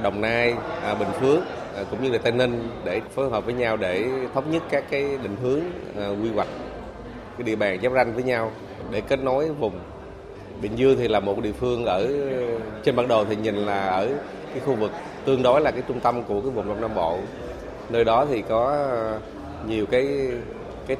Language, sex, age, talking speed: Vietnamese, male, 20-39, 210 wpm